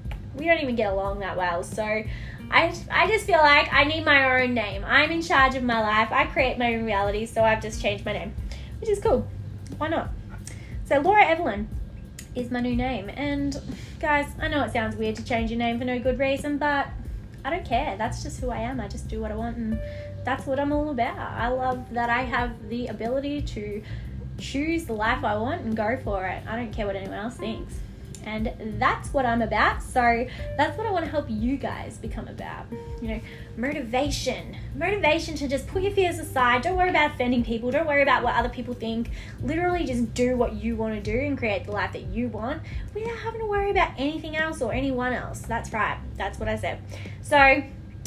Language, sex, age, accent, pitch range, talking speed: English, female, 10-29, Australian, 225-300 Hz, 220 wpm